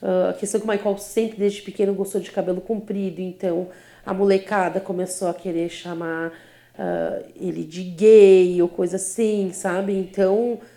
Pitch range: 190-235 Hz